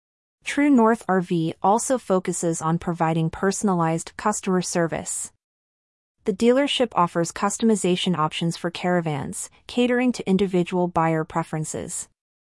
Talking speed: 105 wpm